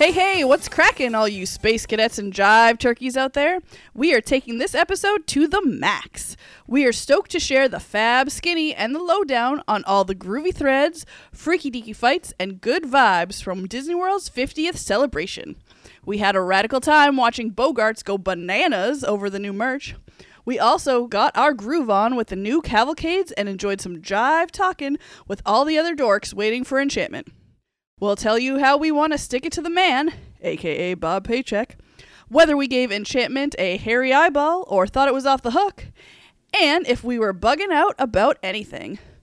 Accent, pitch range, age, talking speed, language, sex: American, 215-315 Hz, 20-39, 185 wpm, English, female